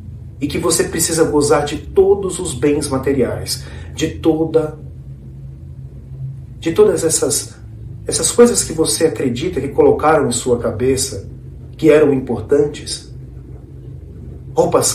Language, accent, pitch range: English, Brazilian, 115-145 Hz